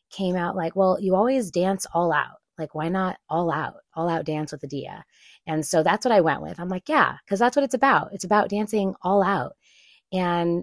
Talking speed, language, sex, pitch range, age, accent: 225 wpm, English, female, 165-210 Hz, 30-49, American